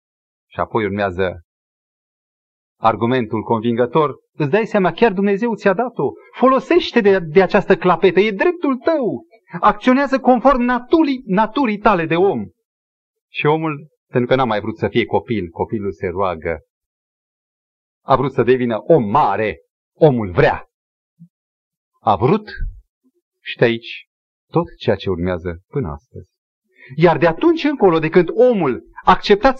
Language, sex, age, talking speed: Romanian, male, 40-59, 135 wpm